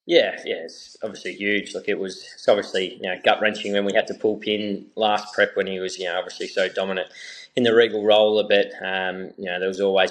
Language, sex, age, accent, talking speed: English, male, 20-39, Australian, 250 wpm